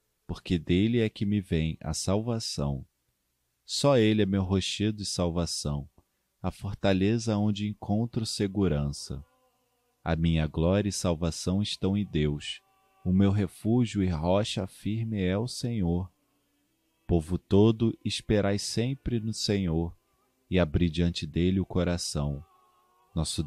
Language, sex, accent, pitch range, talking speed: Portuguese, male, Brazilian, 85-110 Hz, 130 wpm